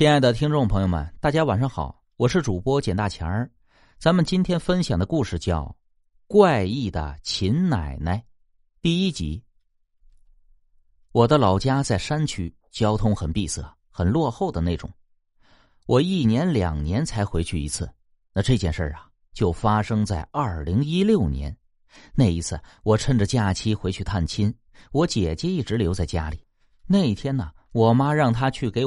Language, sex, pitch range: Chinese, male, 85-135 Hz